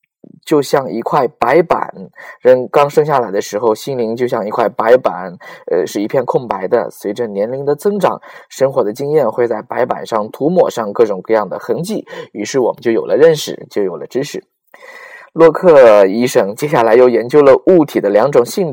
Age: 20-39